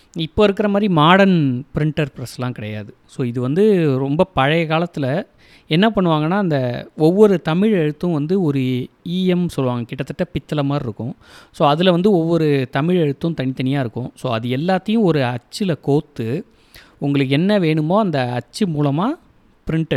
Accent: native